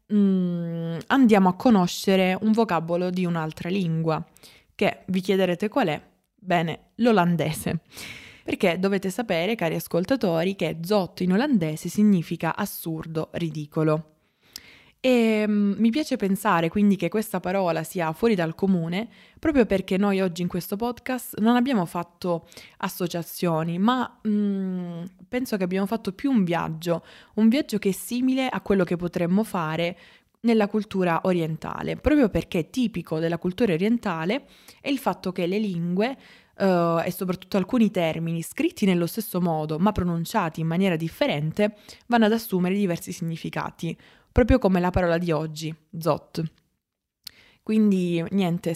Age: 20-39